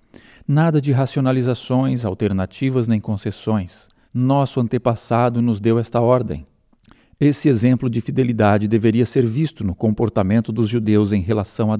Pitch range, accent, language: 110-135 Hz, Brazilian, Portuguese